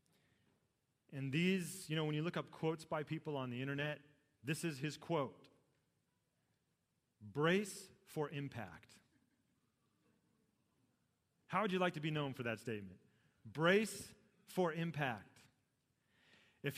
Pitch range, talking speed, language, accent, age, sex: 120-160 Hz, 125 wpm, English, American, 40-59, male